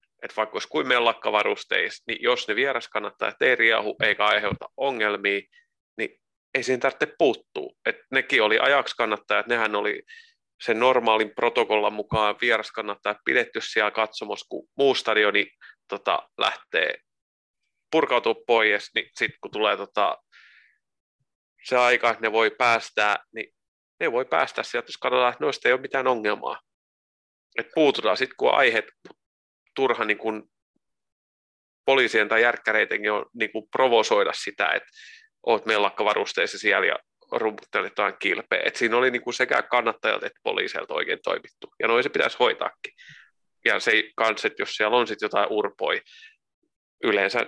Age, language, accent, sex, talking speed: 30-49, Finnish, native, male, 145 wpm